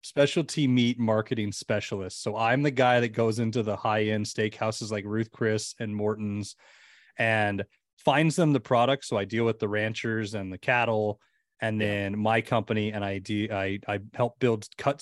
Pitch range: 105-120 Hz